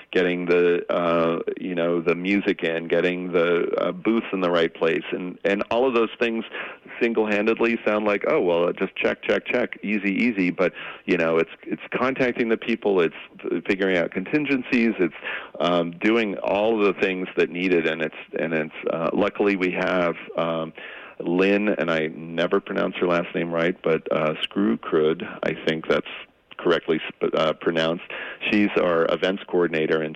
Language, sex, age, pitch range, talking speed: English, male, 40-59, 80-105 Hz, 175 wpm